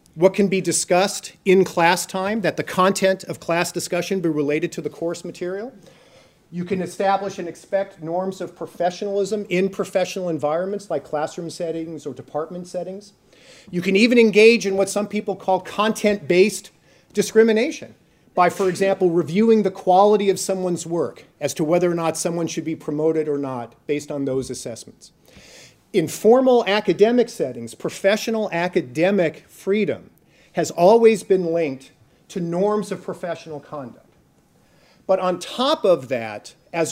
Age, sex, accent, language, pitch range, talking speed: 40-59, male, American, English, 165-200 Hz, 150 wpm